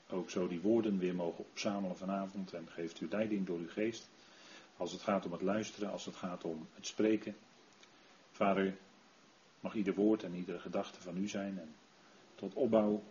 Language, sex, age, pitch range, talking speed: Dutch, male, 40-59, 90-105 Hz, 185 wpm